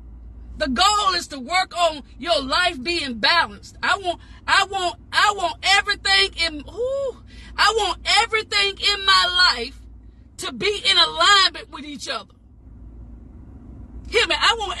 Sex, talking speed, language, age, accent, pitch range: female, 145 wpm, English, 40-59, American, 305-400 Hz